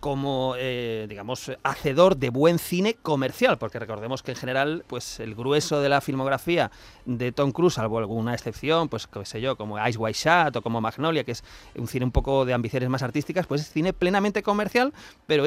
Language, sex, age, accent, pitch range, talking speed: Spanish, male, 30-49, Spanish, 130-170 Hz, 200 wpm